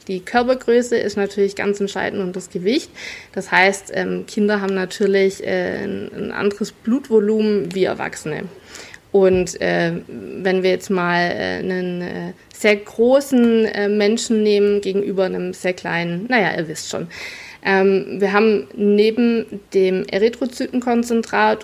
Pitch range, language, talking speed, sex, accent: 195-225 Hz, German, 130 wpm, female, German